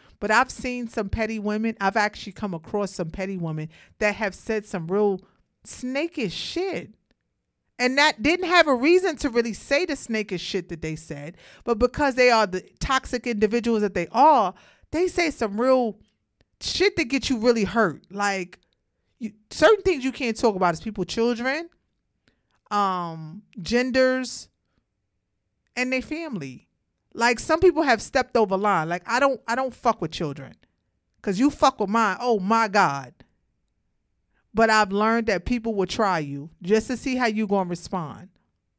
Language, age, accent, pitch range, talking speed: English, 40-59, American, 185-250 Hz, 170 wpm